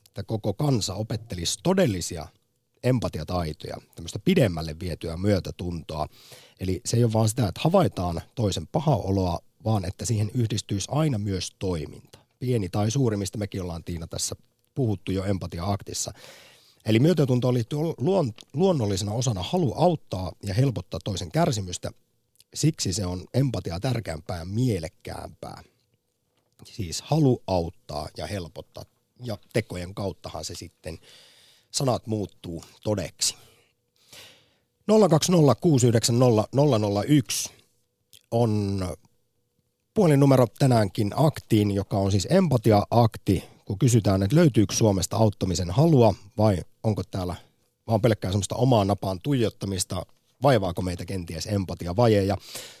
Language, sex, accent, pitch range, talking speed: Finnish, male, native, 95-125 Hz, 110 wpm